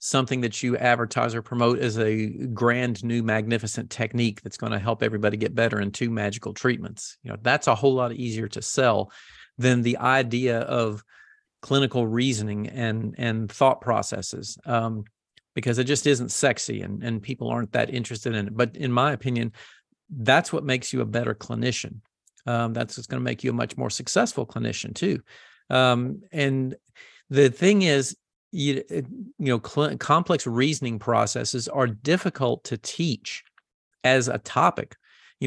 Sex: male